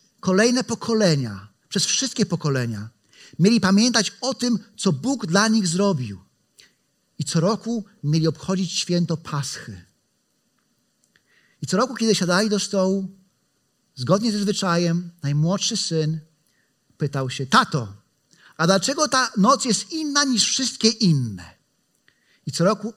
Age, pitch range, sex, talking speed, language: 40-59, 150-205 Hz, male, 125 wpm, Polish